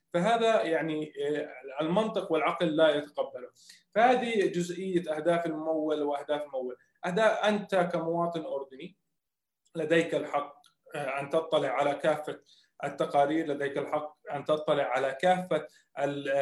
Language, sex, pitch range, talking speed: Arabic, male, 145-175 Hz, 100 wpm